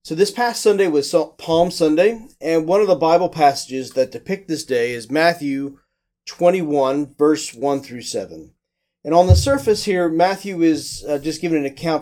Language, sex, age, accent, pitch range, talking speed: English, male, 40-59, American, 135-175 Hz, 180 wpm